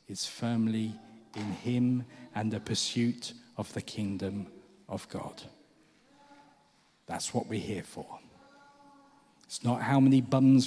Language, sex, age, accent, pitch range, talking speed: English, male, 40-59, British, 110-130 Hz, 125 wpm